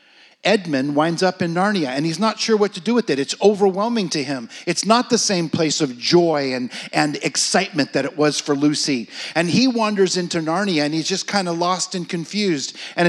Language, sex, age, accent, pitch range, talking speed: English, male, 50-69, American, 160-215 Hz, 215 wpm